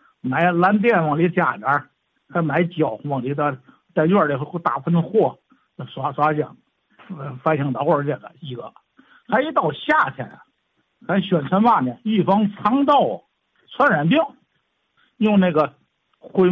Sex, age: male, 60-79